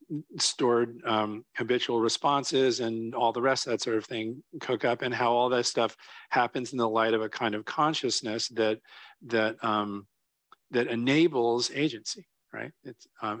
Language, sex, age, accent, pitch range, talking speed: English, male, 40-59, American, 110-130 Hz, 170 wpm